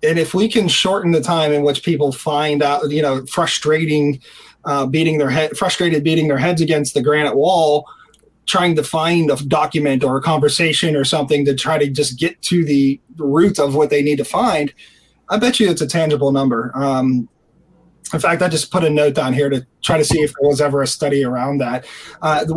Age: 20-39